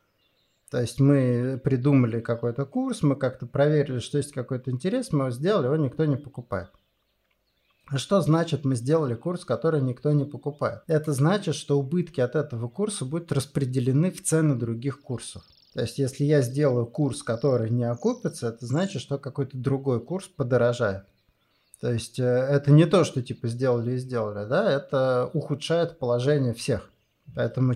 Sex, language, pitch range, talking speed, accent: male, Russian, 120-150 Hz, 160 wpm, native